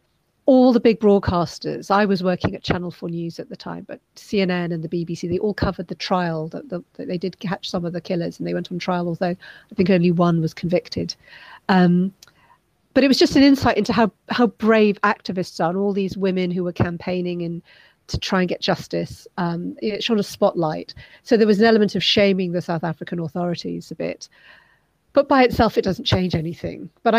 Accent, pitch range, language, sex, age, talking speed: British, 170-205 Hz, English, female, 40-59, 210 wpm